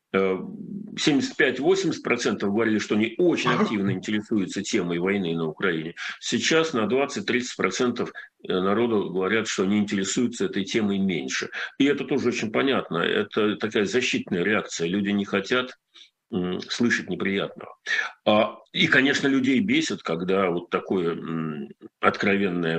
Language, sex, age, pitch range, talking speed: Russian, male, 50-69, 100-145 Hz, 115 wpm